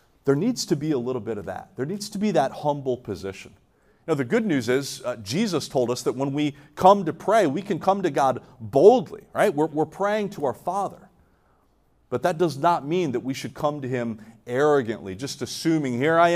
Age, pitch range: 40-59, 135-185 Hz